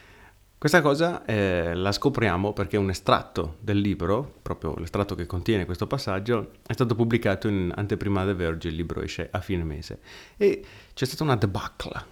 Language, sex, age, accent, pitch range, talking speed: Italian, male, 30-49, native, 90-105 Hz, 170 wpm